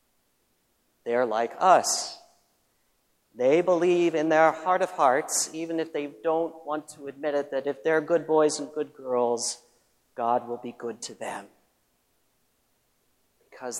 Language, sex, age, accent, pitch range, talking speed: English, male, 40-59, American, 130-170 Hz, 145 wpm